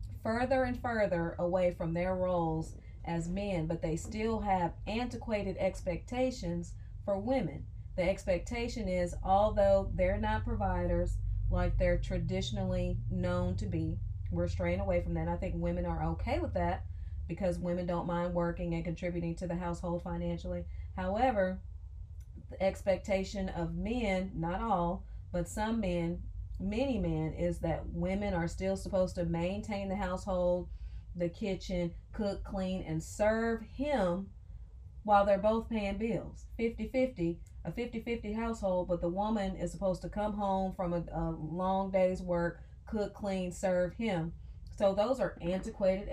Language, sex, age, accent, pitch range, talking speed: English, female, 30-49, American, 165-200 Hz, 150 wpm